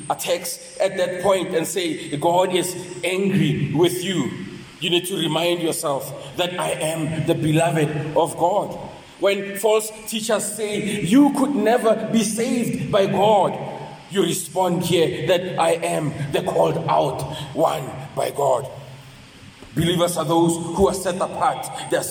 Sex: male